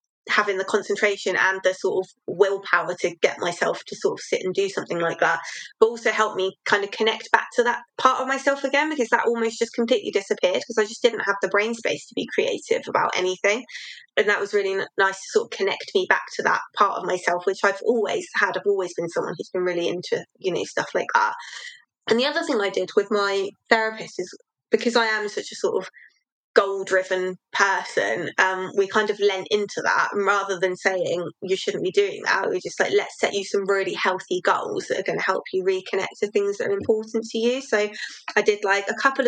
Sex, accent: female, British